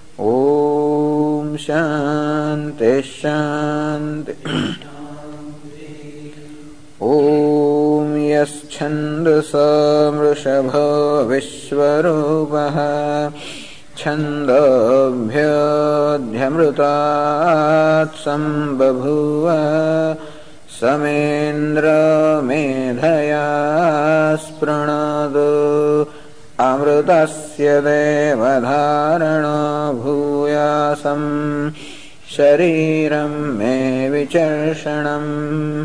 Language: English